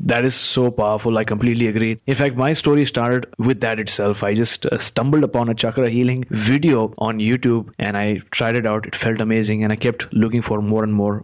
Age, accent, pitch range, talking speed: 20-39, Indian, 110-130 Hz, 220 wpm